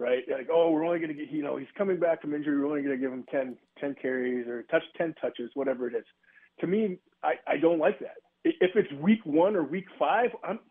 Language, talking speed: English, 260 wpm